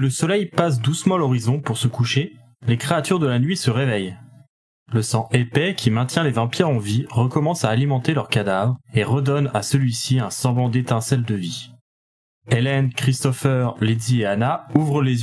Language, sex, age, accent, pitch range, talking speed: French, male, 20-39, French, 120-140 Hz, 180 wpm